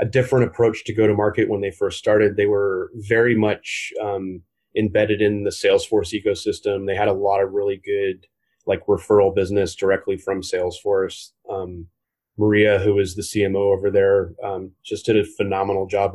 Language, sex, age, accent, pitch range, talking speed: English, male, 30-49, American, 100-125 Hz, 180 wpm